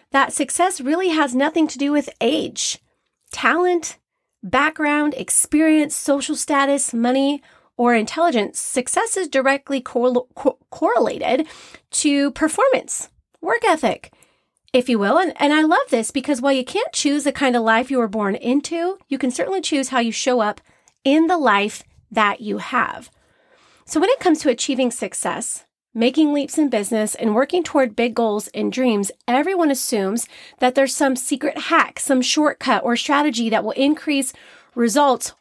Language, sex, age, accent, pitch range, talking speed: English, female, 30-49, American, 235-295 Hz, 160 wpm